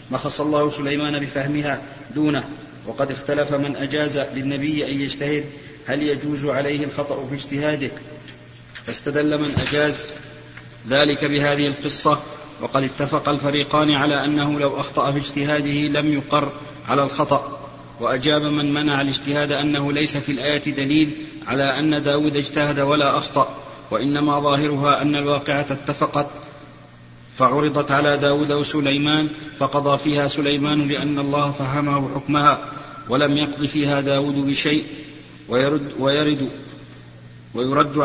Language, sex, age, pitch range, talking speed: Arabic, male, 40-59, 140-150 Hz, 120 wpm